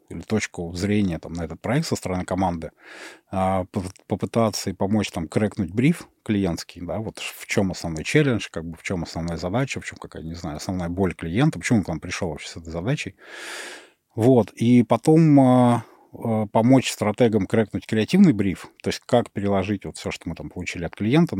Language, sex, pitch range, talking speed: Russian, male, 90-120 Hz, 180 wpm